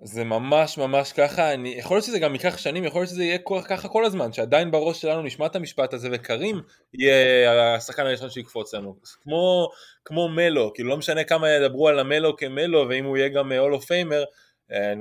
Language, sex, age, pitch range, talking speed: Hebrew, male, 20-39, 115-150 Hz, 195 wpm